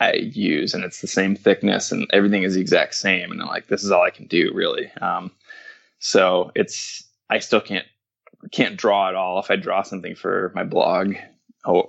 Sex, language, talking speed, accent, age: male, English, 205 wpm, American, 20-39